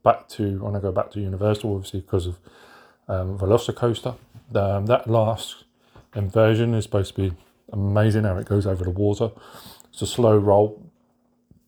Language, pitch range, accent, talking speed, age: English, 95-110 Hz, British, 165 wpm, 30-49